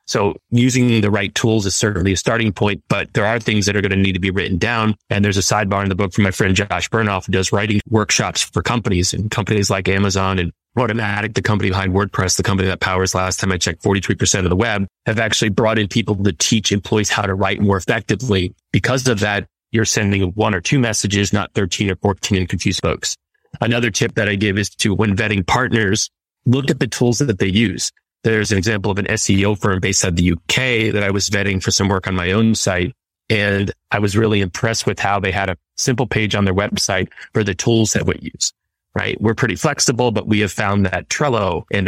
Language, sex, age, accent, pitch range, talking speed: English, male, 30-49, American, 95-110 Hz, 230 wpm